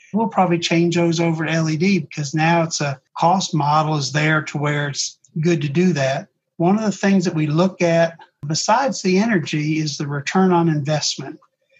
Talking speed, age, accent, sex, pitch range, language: 195 wpm, 50-69, American, male, 155-185 Hz, English